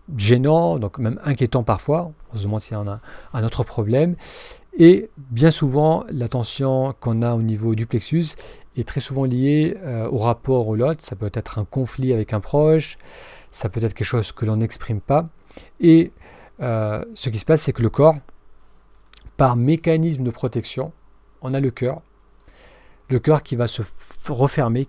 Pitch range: 115-145 Hz